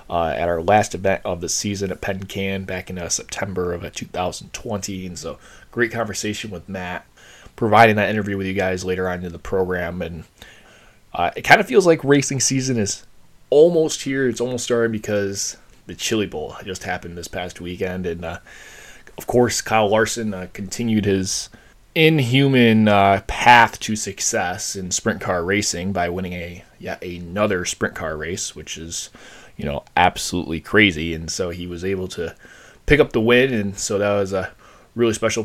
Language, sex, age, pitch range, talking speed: English, male, 20-39, 90-110 Hz, 185 wpm